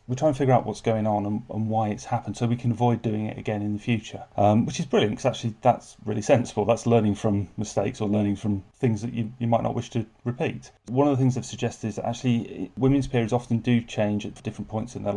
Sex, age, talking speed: male, 30-49, 265 wpm